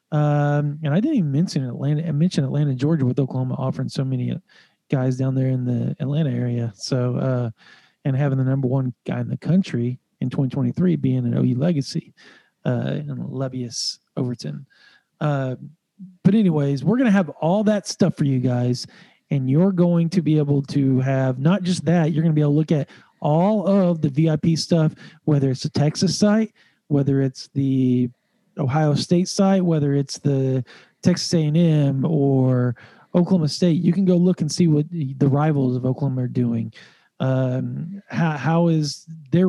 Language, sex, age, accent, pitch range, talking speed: English, male, 40-59, American, 135-175 Hz, 180 wpm